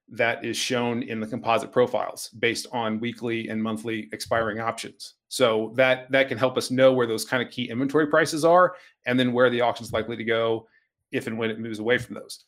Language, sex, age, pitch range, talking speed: English, male, 30-49, 115-140 Hz, 215 wpm